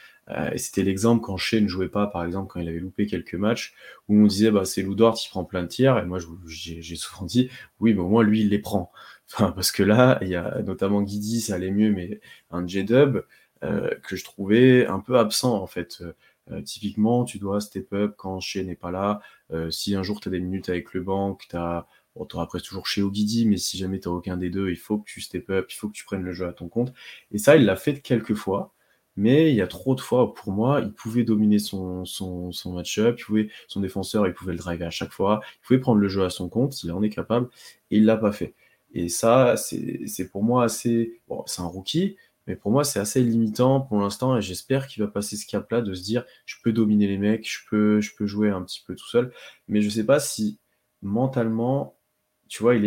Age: 20-39